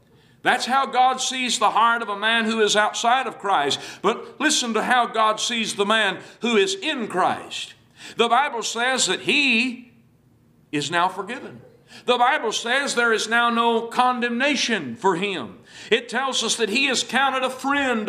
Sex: male